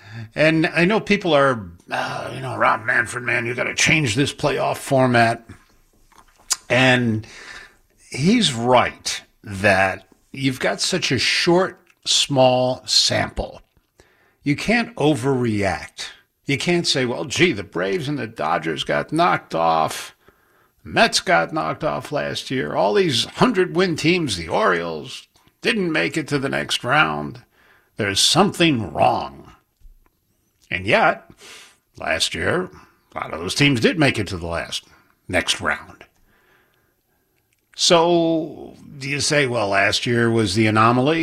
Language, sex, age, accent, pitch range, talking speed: English, male, 60-79, American, 110-160 Hz, 135 wpm